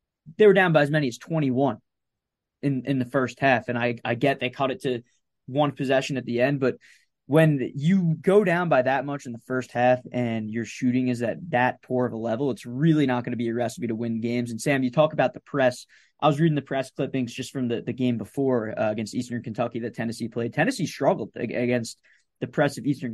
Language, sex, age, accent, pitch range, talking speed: English, male, 20-39, American, 120-140 Hz, 240 wpm